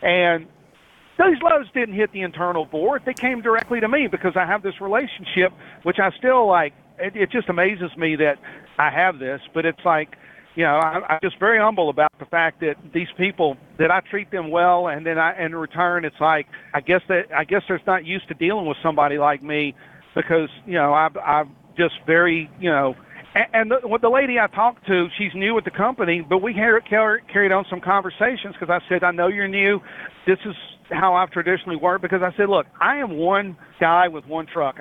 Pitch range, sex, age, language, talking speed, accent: 160-200 Hz, male, 50-69, English, 215 wpm, American